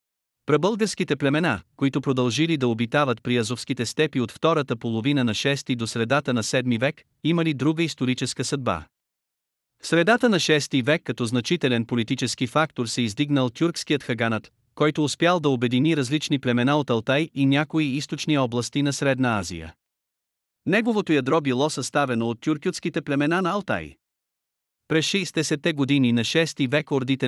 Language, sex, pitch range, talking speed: Bulgarian, male, 120-155 Hz, 145 wpm